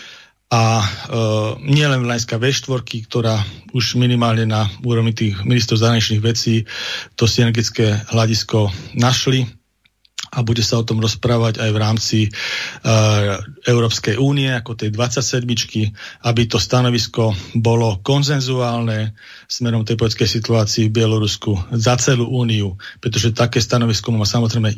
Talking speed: 130 wpm